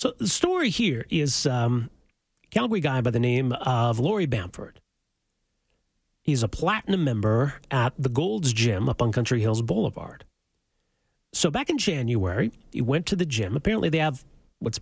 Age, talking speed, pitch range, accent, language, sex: 40-59, 165 wpm, 120-165 Hz, American, English, male